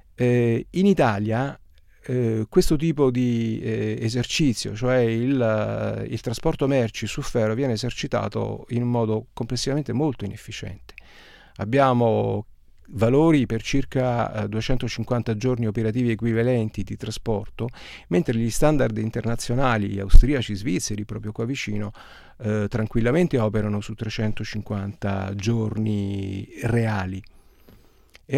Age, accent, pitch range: 40-59, native, 110-135 Hz